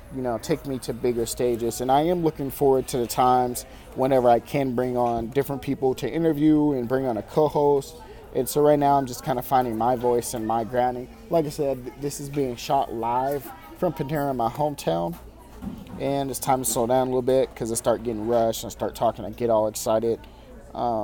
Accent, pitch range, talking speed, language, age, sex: American, 120-145 Hz, 220 wpm, English, 30-49, male